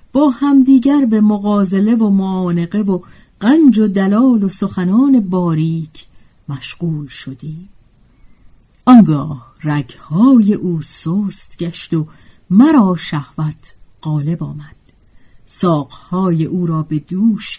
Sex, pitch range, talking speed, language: female, 150-210 Hz, 100 wpm, Persian